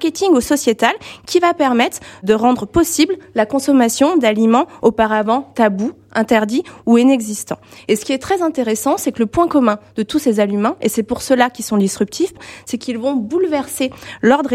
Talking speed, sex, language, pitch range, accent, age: 180 wpm, female, French, 210-275 Hz, French, 20-39